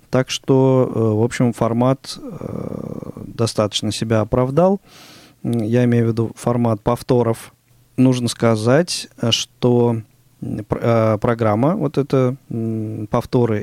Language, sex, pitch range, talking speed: Russian, male, 110-130 Hz, 95 wpm